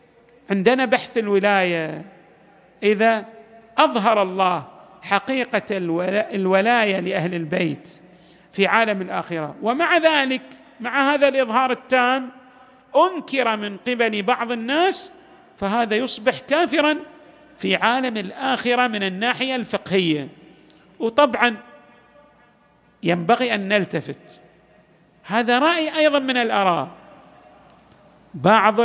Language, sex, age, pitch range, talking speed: Arabic, male, 50-69, 205-255 Hz, 90 wpm